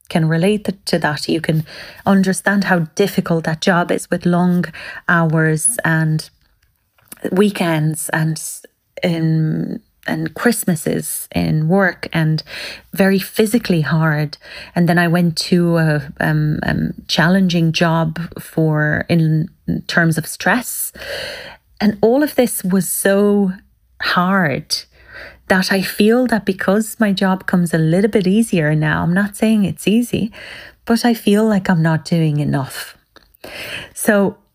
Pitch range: 160-200 Hz